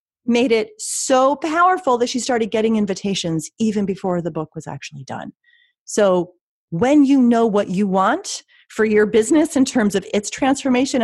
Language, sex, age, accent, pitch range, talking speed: English, female, 30-49, American, 175-250 Hz, 170 wpm